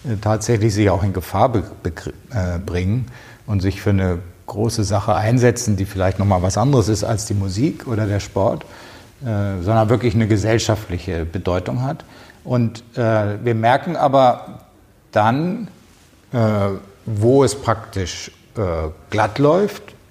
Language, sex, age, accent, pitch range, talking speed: German, male, 60-79, German, 95-120 Hz, 140 wpm